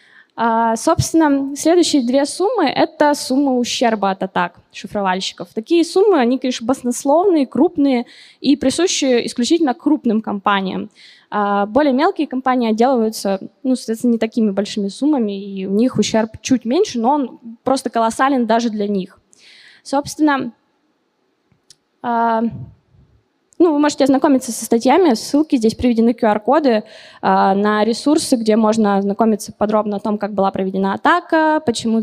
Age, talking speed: 20-39, 125 wpm